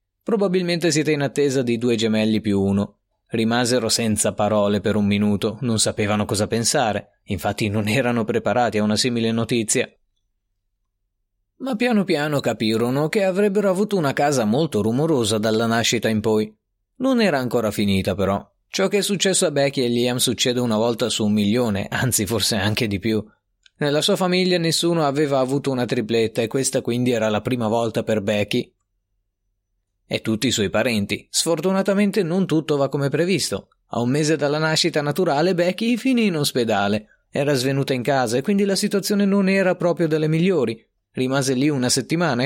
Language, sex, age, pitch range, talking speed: Italian, male, 30-49, 110-170 Hz, 170 wpm